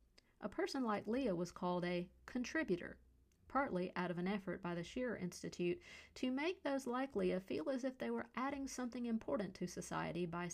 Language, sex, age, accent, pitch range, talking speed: English, female, 50-69, American, 175-235 Hz, 190 wpm